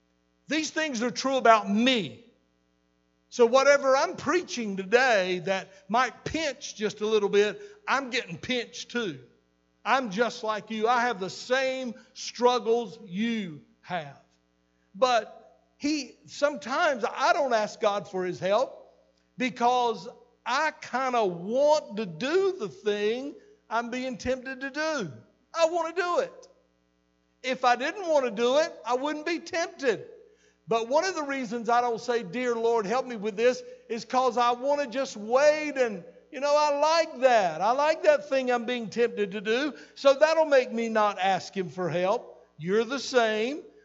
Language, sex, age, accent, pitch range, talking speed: English, male, 60-79, American, 205-275 Hz, 165 wpm